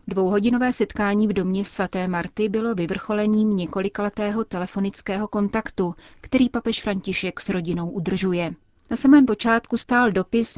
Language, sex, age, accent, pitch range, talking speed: Czech, female, 30-49, native, 180-210 Hz, 125 wpm